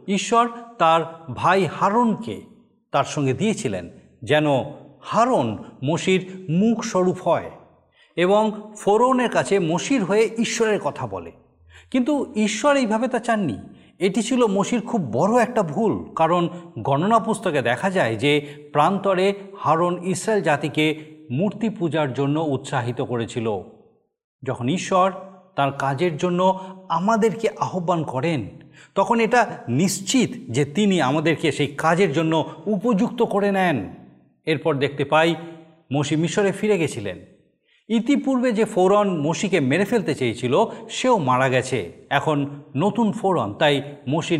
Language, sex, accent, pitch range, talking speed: Bengali, male, native, 145-210 Hz, 120 wpm